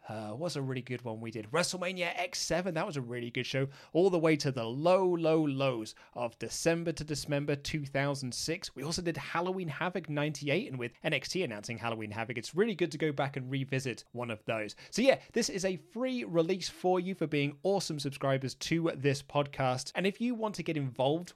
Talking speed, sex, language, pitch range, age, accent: 210 wpm, male, English, 135-190 Hz, 30-49, British